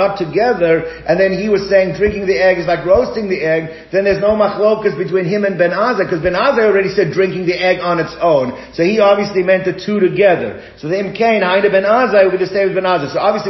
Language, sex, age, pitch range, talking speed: English, male, 50-69, 165-205 Hz, 245 wpm